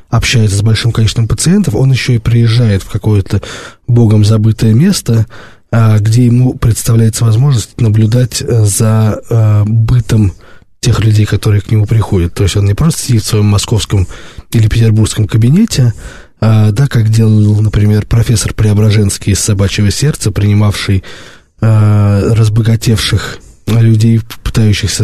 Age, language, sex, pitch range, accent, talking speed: 20-39, Russian, male, 105-120 Hz, native, 125 wpm